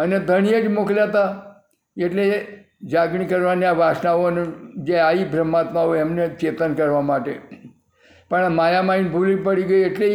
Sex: male